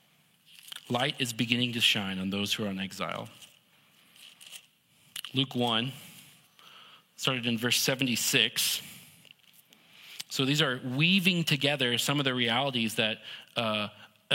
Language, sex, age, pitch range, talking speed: English, male, 30-49, 120-150 Hz, 115 wpm